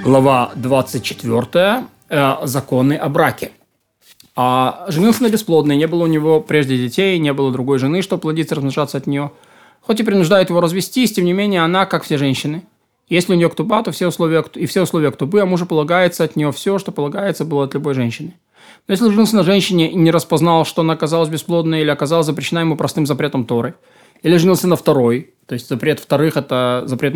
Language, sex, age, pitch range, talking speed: Russian, male, 20-39, 140-180 Hz, 190 wpm